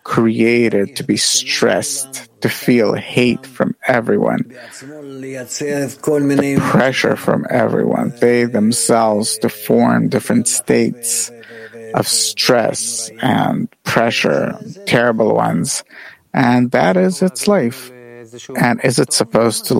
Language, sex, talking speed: English, male, 105 wpm